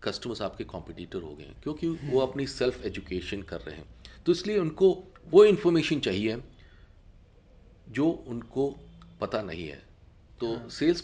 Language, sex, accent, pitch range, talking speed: Hindi, male, native, 100-155 Hz, 145 wpm